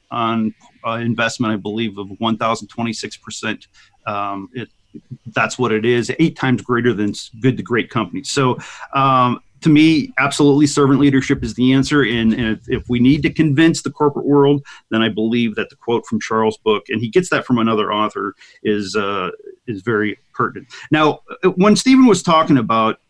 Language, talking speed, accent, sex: English, 180 wpm, American, male